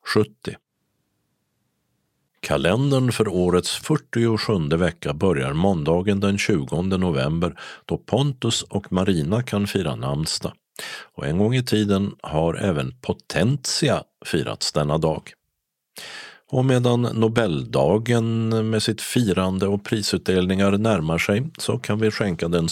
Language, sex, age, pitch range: Swedish, male, 50-69, 85-115 Hz